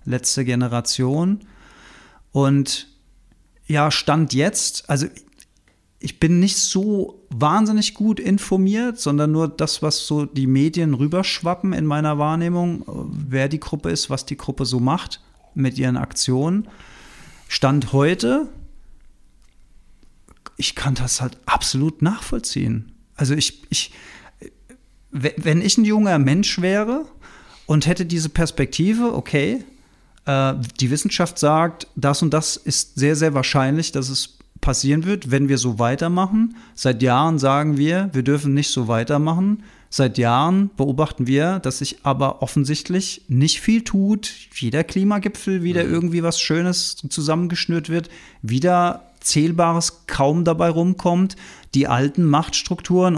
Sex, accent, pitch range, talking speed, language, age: male, German, 140-180 Hz, 125 wpm, German, 40-59